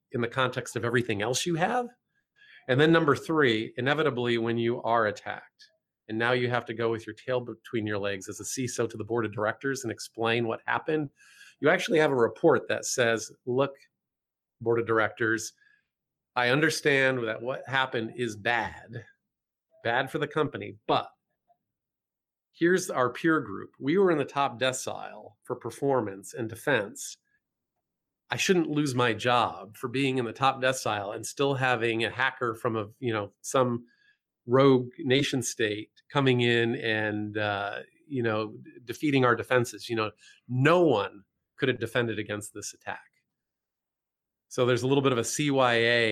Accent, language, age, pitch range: American, English, 40-59, 110-135 Hz